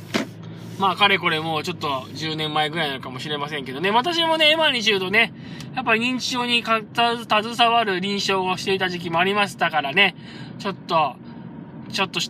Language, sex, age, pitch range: Japanese, male, 20-39, 175-230 Hz